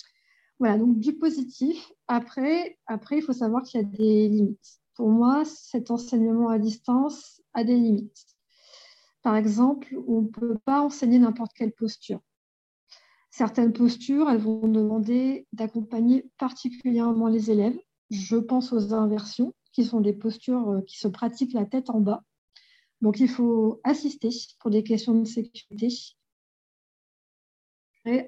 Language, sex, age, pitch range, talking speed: French, female, 50-69, 220-255 Hz, 140 wpm